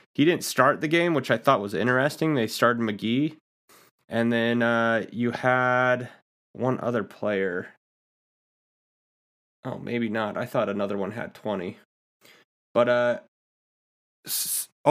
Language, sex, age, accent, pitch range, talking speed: English, male, 30-49, American, 105-130 Hz, 130 wpm